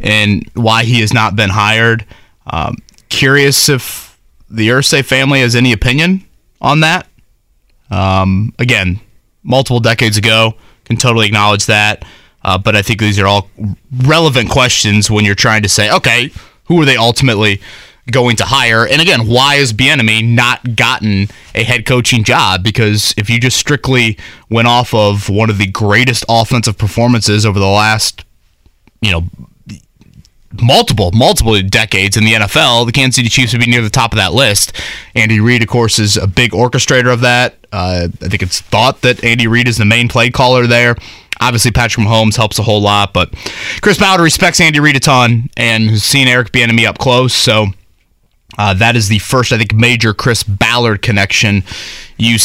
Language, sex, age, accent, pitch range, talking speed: English, male, 20-39, American, 105-125 Hz, 180 wpm